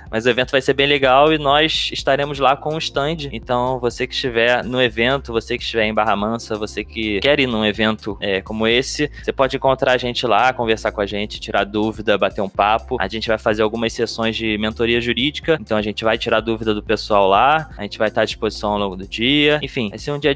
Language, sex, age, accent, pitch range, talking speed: Portuguese, male, 20-39, Brazilian, 110-135 Hz, 240 wpm